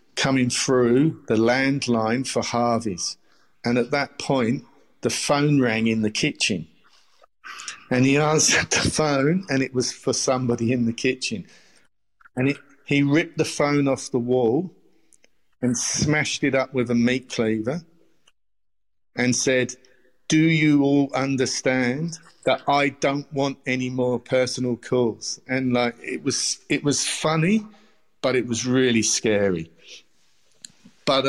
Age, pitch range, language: 50-69, 115-140 Hz, English